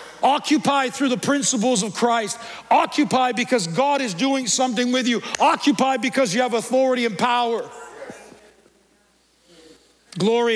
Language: English